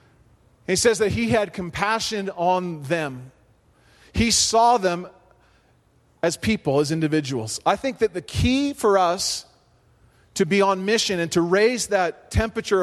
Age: 40-59